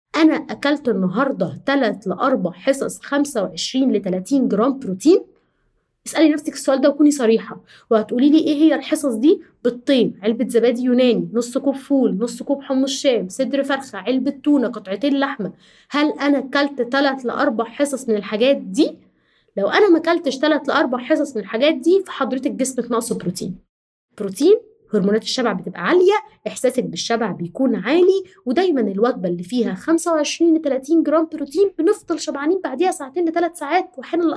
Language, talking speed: Arabic, 155 wpm